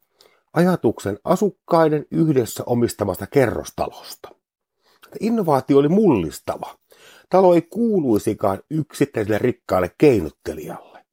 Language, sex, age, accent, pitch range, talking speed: Finnish, male, 50-69, native, 110-180 Hz, 75 wpm